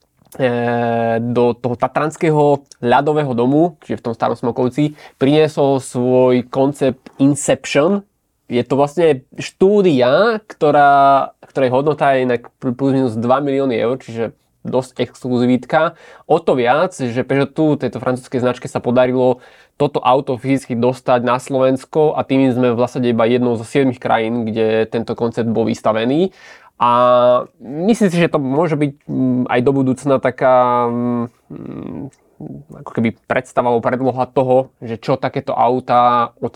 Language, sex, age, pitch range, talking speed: Slovak, male, 20-39, 120-135 Hz, 135 wpm